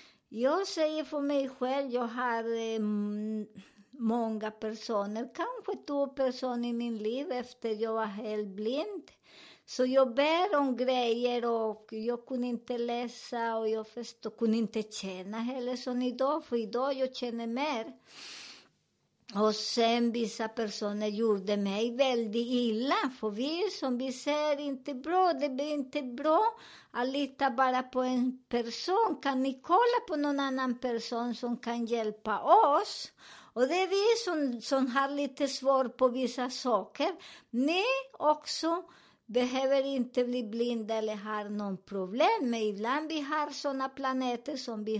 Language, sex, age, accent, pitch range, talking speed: Swedish, male, 50-69, American, 225-285 Hz, 145 wpm